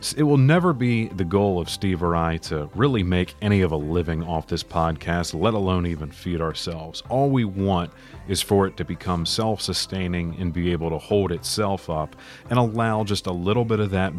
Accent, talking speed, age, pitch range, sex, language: American, 205 wpm, 30-49, 85-105 Hz, male, English